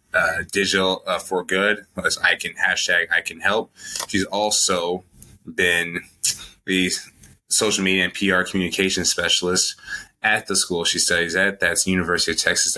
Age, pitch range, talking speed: 20-39, 90-100 Hz, 150 wpm